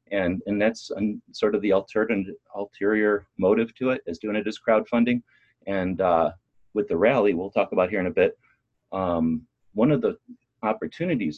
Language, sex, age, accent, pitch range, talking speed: English, male, 30-49, American, 95-120 Hz, 175 wpm